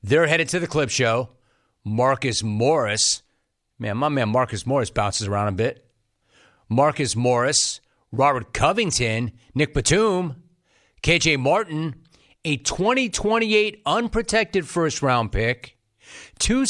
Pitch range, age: 120-170 Hz, 40-59